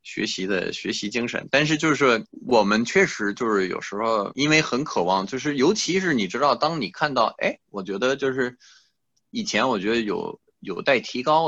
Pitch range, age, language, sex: 130-190 Hz, 20-39, Chinese, male